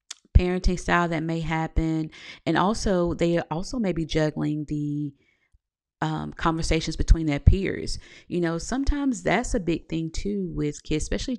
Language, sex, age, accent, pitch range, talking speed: English, female, 30-49, American, 145-175 Hz, 155 wpm